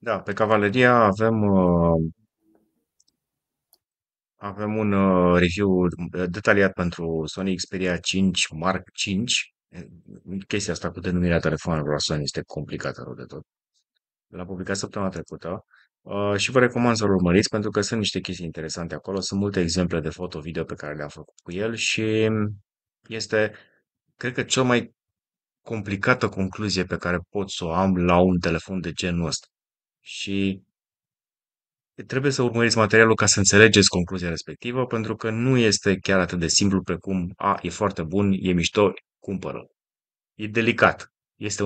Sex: male